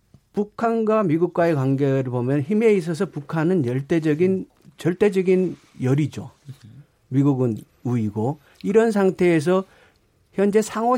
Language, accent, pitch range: Korean, native, 130-205 Hz